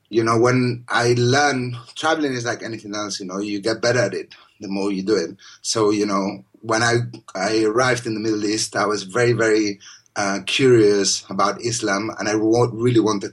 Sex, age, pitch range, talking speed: male, 30-49, 105-120 Hz, 205 wpm